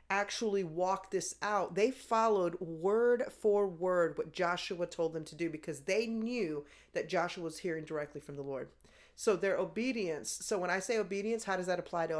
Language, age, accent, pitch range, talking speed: English, 40-59, American, 170-215 Hz, 190 wpm